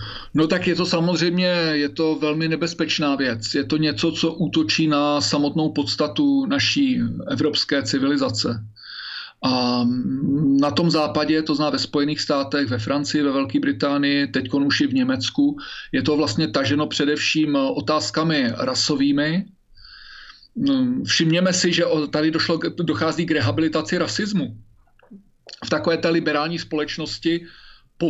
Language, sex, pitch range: Slovak, male, 145-170 Hz